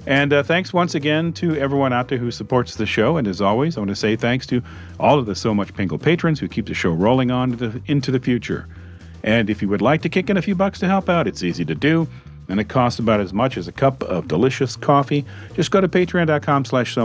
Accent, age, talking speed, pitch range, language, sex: American, 40-59, 260 wpm, 95-145 Hz, English, male